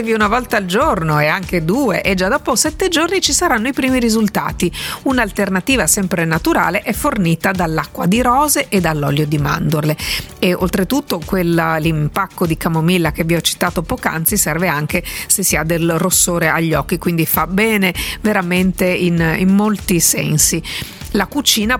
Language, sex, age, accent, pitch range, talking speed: Italian, female, 50-69, native, 175-220 Hz, 160 wpm